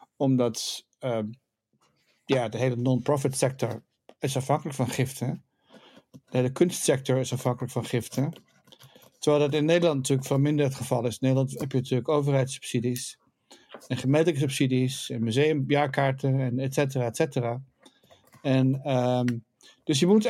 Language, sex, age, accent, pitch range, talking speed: English, male, 60-79, Dutch, 130-150 Hz, 125 wpm